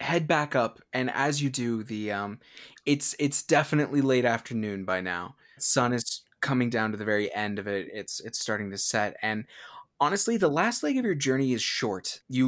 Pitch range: 110-145 Hz